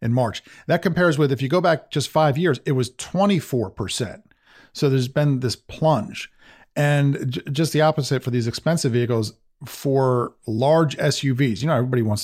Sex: male